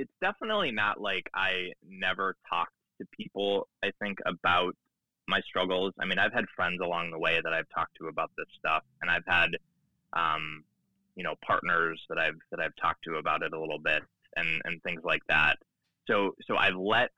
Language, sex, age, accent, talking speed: English, male, 20-39, American, 195 wpm